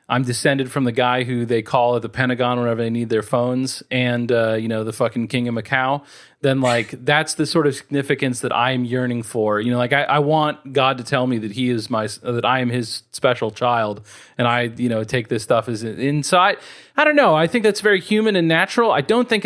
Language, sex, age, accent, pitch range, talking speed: English, male, 30-49, American, 120-160 Hz, 245 wpm